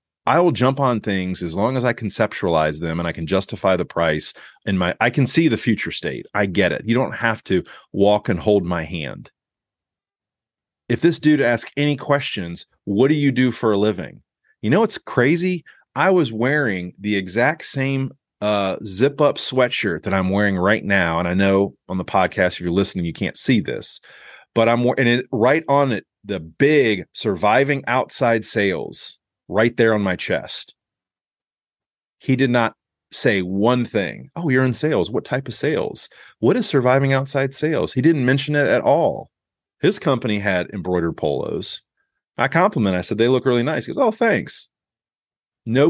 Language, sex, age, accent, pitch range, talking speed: English, male, 30-49, American, 95-135 Hz, 185 wpm